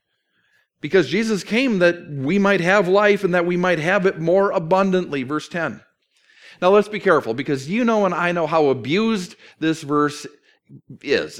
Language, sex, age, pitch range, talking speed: English, male, 40-59, 155-205 Hz, 175 wpm